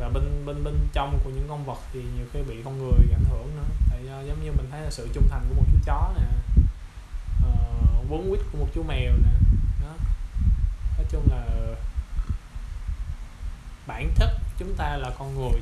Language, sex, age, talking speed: Vietnamese, male, 20-39, 195 wpm